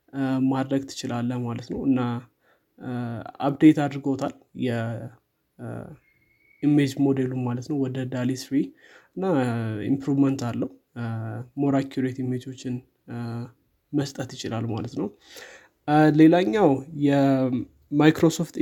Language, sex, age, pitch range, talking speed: Amharic, male, 20-39, 130-145 Hz, 75 wpm